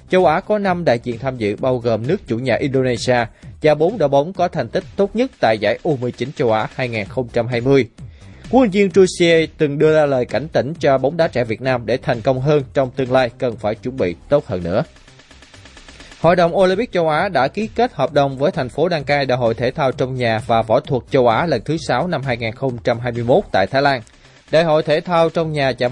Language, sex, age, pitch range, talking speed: Vietnamese, male, 20-39, 120-160 Hz, 230 wpm